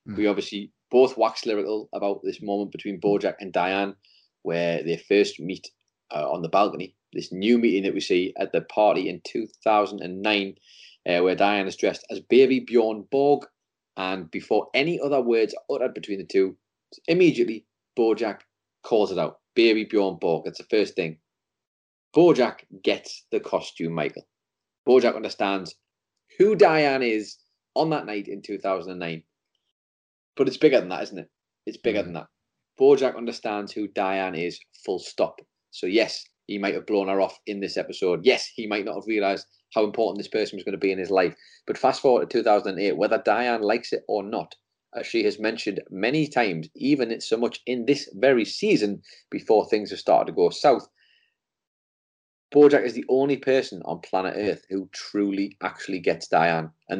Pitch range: 95-135 Hz